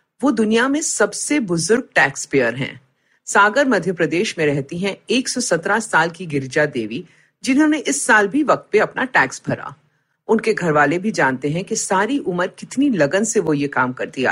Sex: female